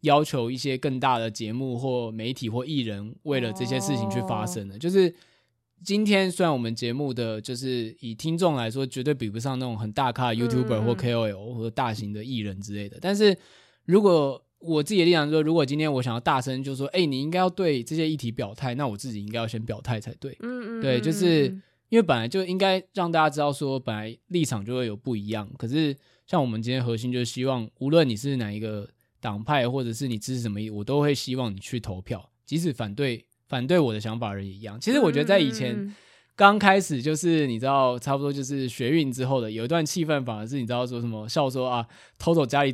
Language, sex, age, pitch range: Chinese, male, 20-39, 115-150 Hz